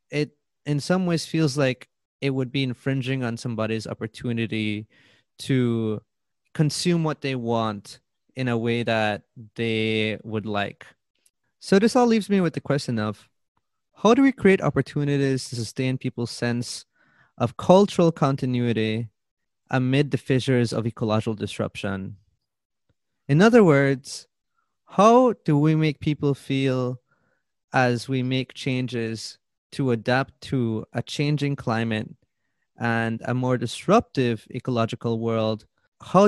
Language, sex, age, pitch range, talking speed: English, male, 20-39, 110-140 Hz, 130 wpm